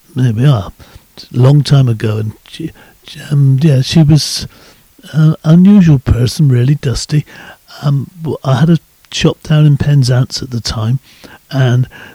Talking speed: 145 wpm